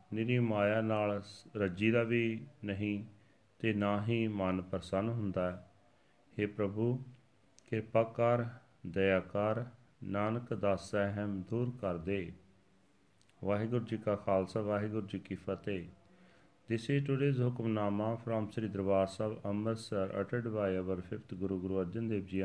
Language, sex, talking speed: Punjabi, male, 135 wpm